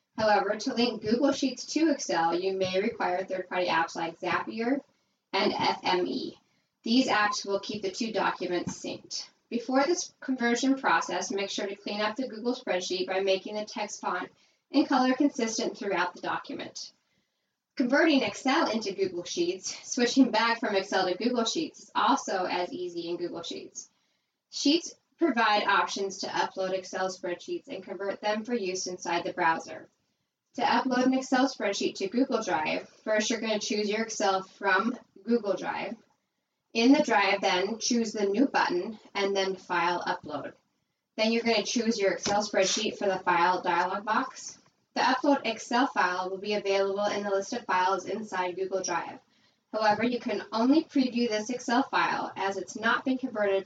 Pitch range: 190-255 Hz